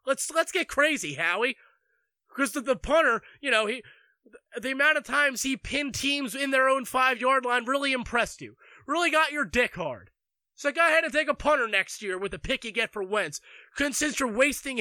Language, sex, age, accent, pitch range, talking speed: English, male, 20-39, American, 210-280 Hz, 210 wpm